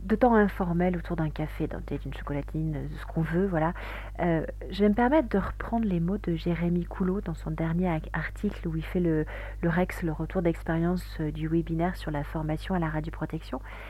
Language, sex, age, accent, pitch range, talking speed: French, female, 40-59, French, 155-205 Hz, 205 wpm